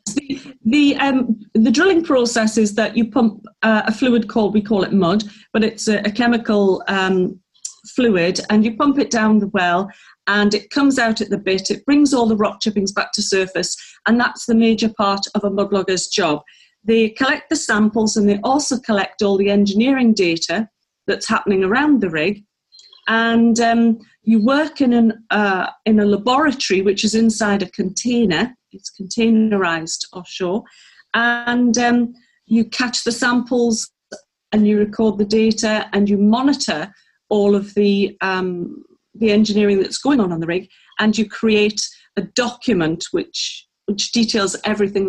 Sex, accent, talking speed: female, British, 170 wpm